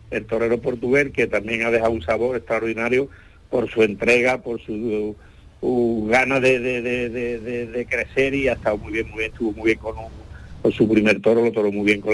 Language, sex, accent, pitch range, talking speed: Spanish, male, Spanish, 110-135 Hz, 220 wpm